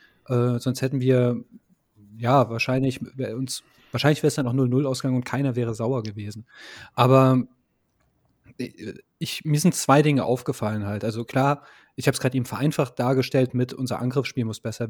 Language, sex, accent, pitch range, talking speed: German, male, German, 120-140 Hz, 155 wpm